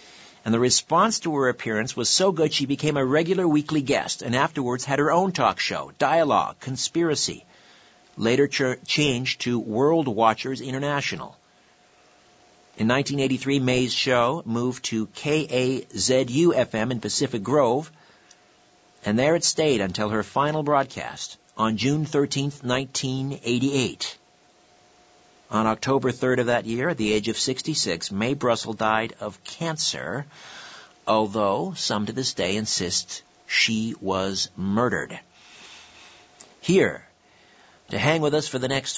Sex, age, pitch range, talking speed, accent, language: male, 50-69, 115-150 Hz, 130 wpm, American, English